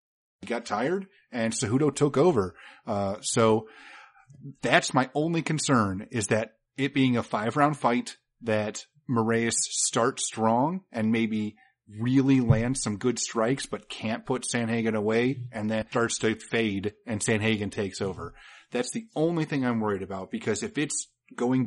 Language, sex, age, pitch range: English, male, 30-49, 105-130 Hz